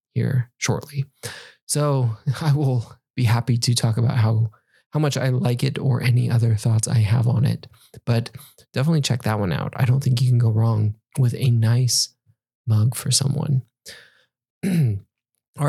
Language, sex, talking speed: English, male, 170 wpm